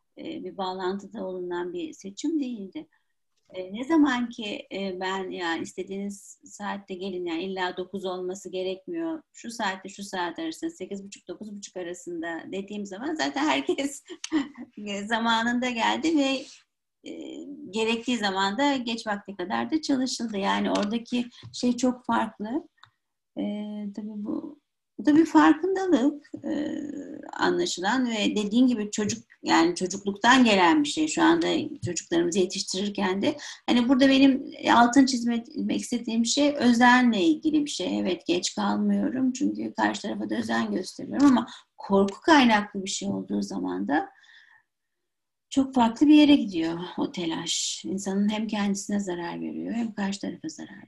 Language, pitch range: Turkish, 195-290 Hz